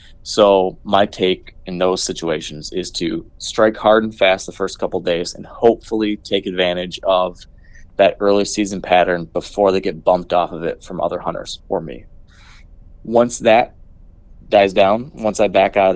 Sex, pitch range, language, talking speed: male, 90-105 Hz, English, 175 wpm